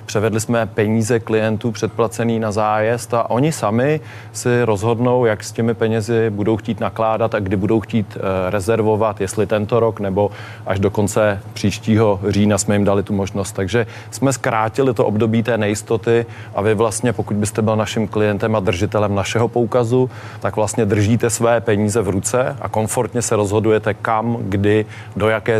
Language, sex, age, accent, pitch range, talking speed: Czech, male, 30-49, native, 105-115 Hz, 170 wpm